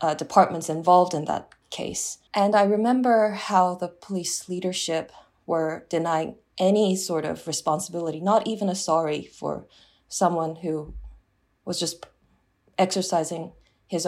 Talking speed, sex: 130 wpm, female